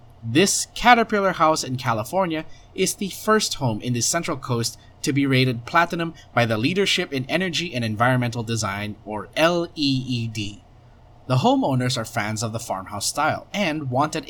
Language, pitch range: English, 115-160 Hz